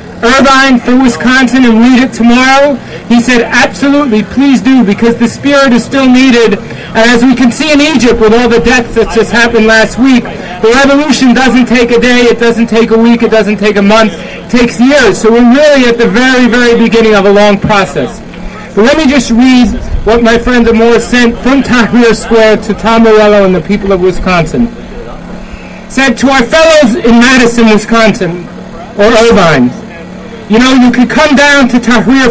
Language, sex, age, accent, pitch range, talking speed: English, male, 40-59, American, 225-260 Hz, 190 wpm